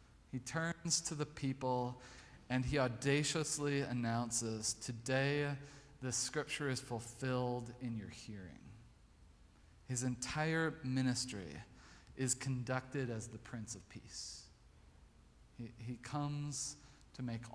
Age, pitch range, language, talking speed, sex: 40-59, 110-140 Hz, English, 110 wpm, male